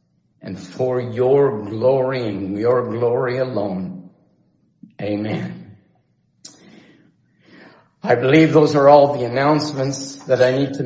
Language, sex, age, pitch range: English, male, 50-69, 115-135 Hz